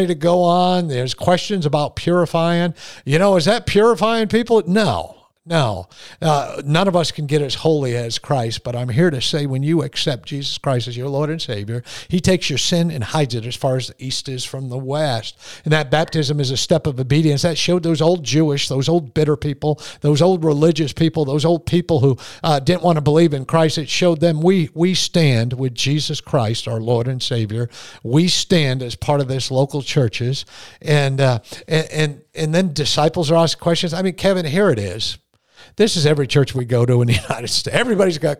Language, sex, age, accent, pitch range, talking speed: English, male, 50-69, American, 125-165 Hz, 215 wpm